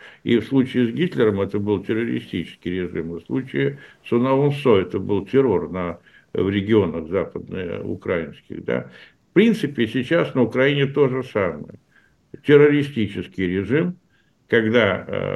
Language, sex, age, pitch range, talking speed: Russian, male, 60-79, 100-135 Hz, 130 wpm